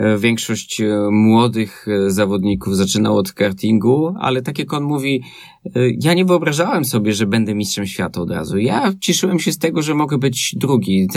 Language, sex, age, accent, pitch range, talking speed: Polish, male, 20-39, native, 105-125 Hz, 160 wpm